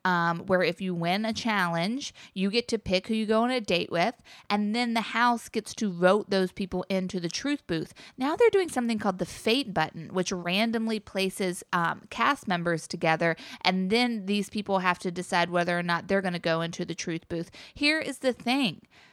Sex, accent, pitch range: female, American, 180-235 Hz